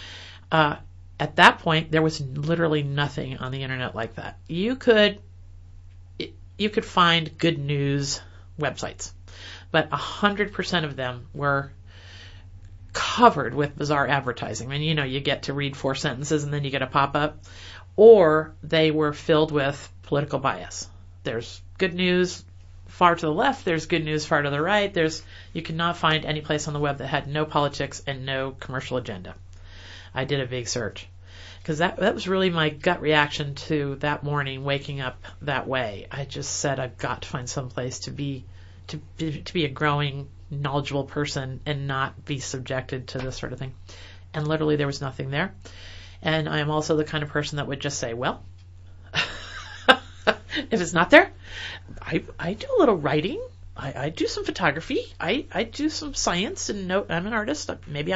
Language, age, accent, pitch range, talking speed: English, 40-59, American, 95-155 Hz, 185 wpm